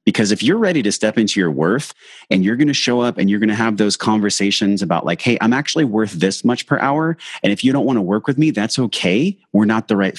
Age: 30-49